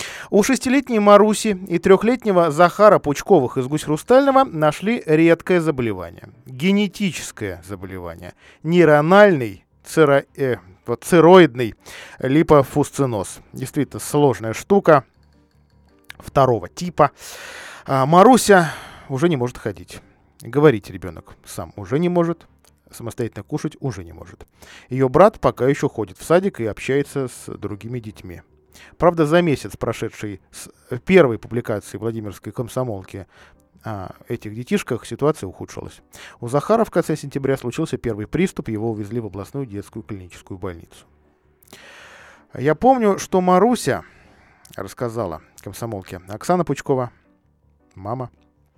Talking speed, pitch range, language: 115 wpm, 100-160 Hz, Russian